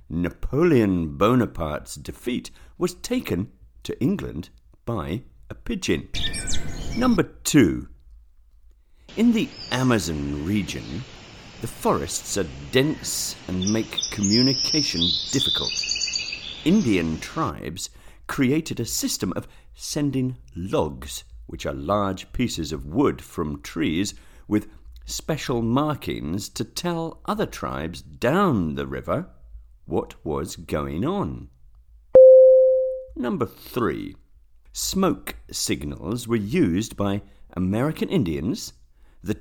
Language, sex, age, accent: English, male, 50-69, British